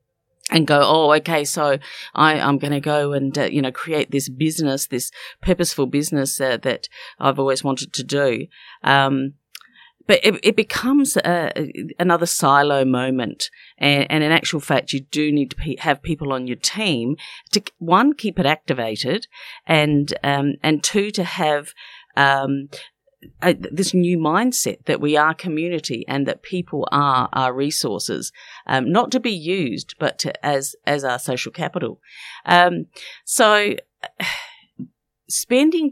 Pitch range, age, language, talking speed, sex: 140-175 Hz, 50-69, English, 155 wpm, female